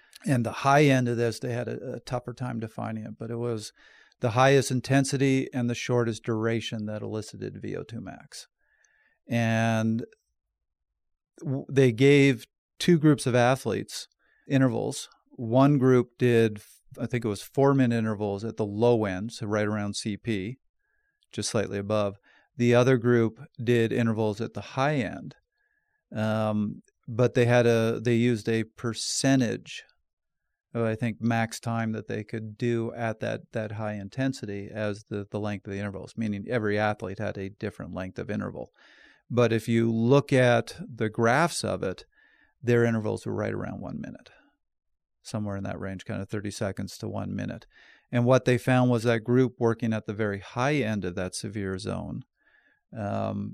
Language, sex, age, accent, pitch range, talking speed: English, male, 40-59, American, 105-125 Hz, 170 wpm